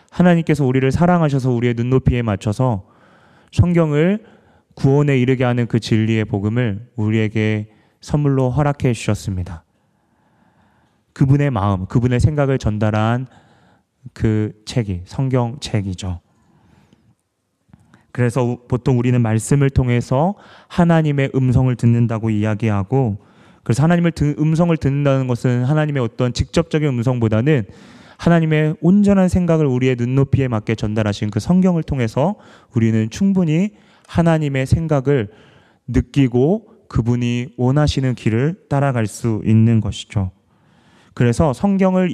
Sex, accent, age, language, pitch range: male, native, 30-49, Korean, 110-150 Hz